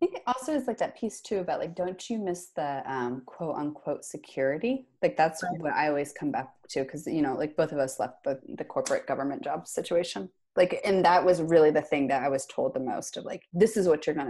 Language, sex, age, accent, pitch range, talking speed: English, female, 30-49, American, 155-210 Hz, 255 wpm